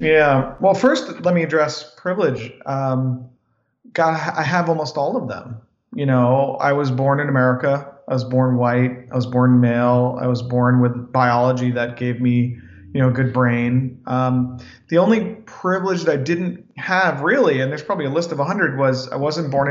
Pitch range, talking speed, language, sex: 125-155 Hz, 190 wpm, English, male